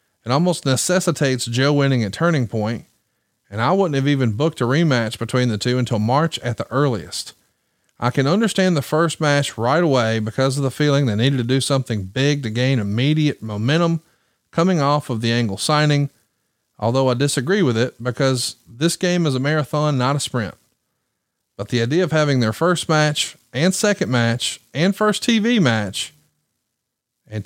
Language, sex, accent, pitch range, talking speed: English, male, American, 120-155 Hz, 180 wpm